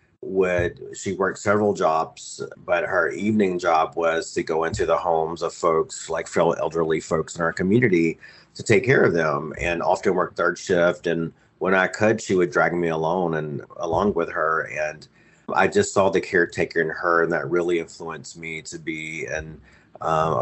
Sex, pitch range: male, 85-95 Hz